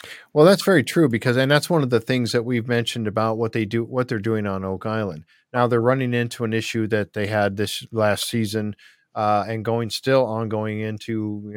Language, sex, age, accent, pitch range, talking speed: English, male, 50-69, American, 110-130 Hz, 225 wpm